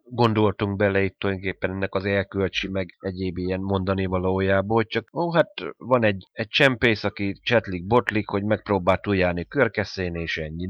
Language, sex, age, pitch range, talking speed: Hungarian, male, 30-49, 90-105 Hz, 165 wpm